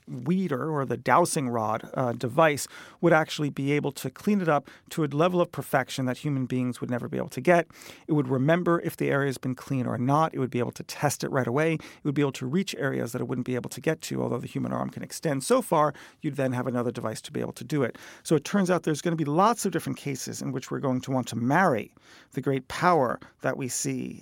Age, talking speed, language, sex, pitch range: 40-59, 270 wpm, English, male, 125-165 Hz